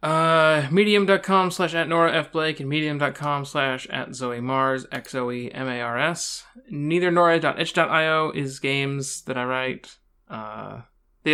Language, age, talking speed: English, 20-39, 115 wpm